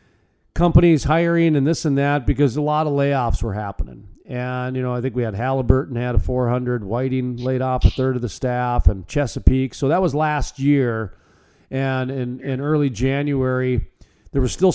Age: 40-59